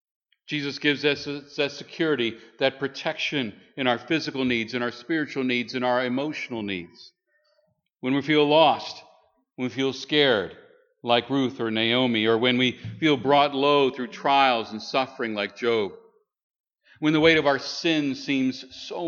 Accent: American